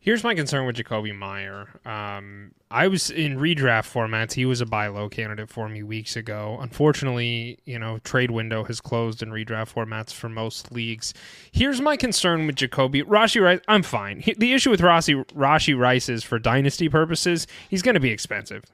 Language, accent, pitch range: English, American, 115-160 Hz